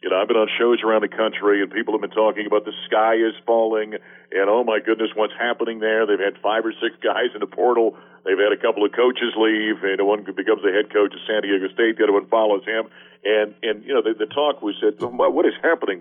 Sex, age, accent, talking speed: male, 50-69, American, 260 wpm